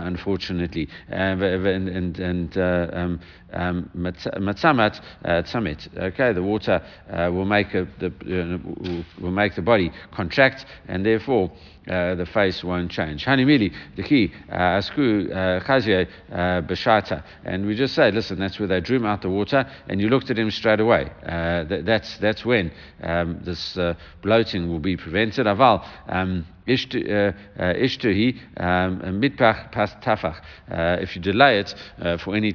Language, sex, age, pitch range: English, male, 60-79, 90-110 Hz